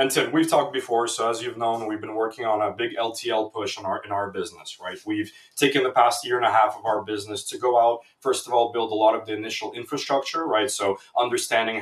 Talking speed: 255 wpm